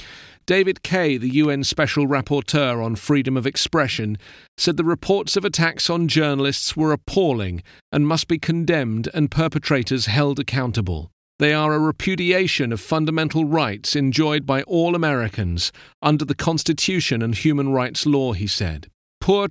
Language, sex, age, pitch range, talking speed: English, male, 40-59, 115-155 Hz, 150 wpm